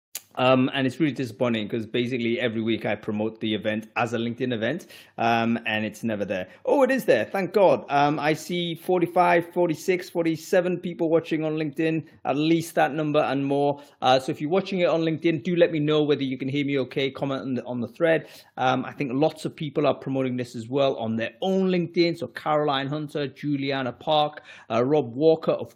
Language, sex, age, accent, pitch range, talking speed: English, male, 30-49, British, 130-185 Hz, 210 wpm